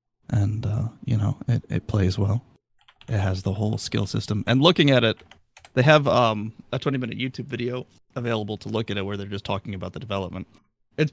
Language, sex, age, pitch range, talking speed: English, male, 30-49, 105-135 Hz, 210 wpm